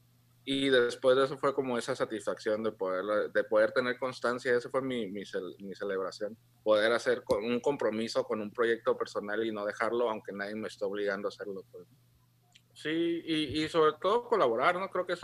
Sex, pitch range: male, 110-155 Hz